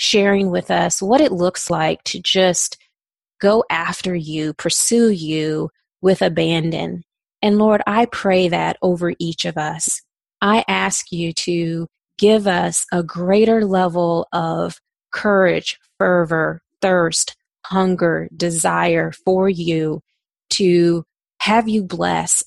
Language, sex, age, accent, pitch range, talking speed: English, female, 30-49, American, 170-205 Hz, 125 wpm